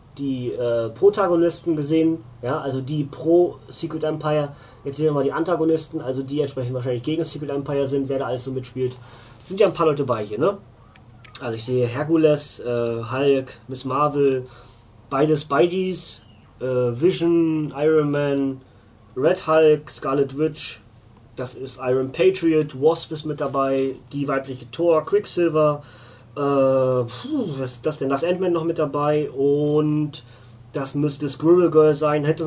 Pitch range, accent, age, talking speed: 125-155 Hz, German, 30-49, 160 wpm